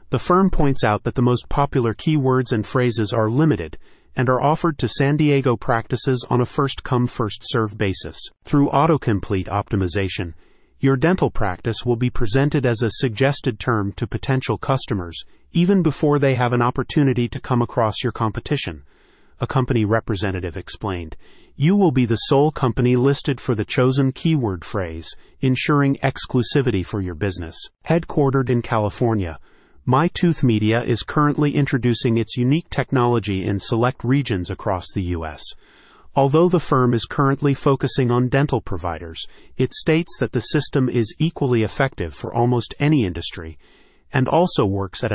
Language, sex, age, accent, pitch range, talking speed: English, male, 30-49, American, 105-140 Hz, 155 wpm